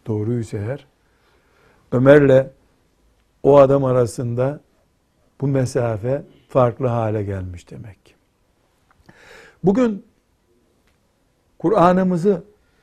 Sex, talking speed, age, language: male, 70 wpm, 60-79, Turkish